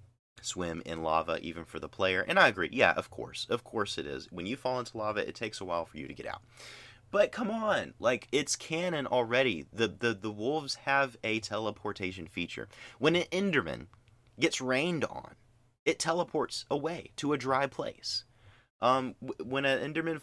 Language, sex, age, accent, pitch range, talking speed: English, male, 30-49, American, 105-135 Hz, 185 wpm